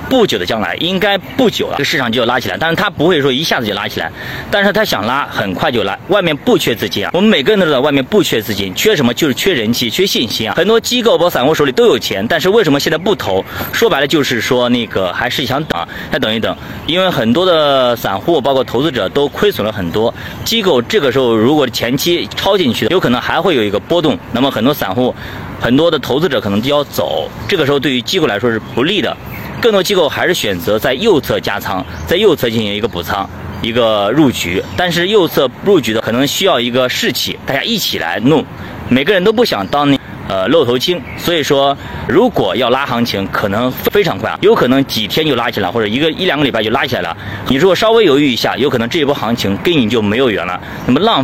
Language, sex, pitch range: Chinese, male, 110-155 Hz